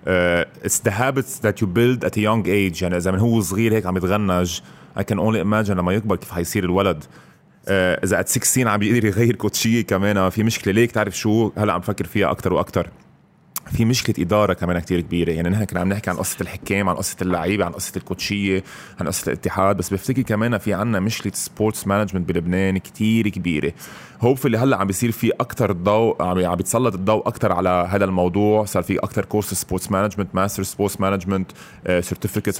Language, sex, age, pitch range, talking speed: Arabic, male, 20-39, 95-115 Hz, 195 wpm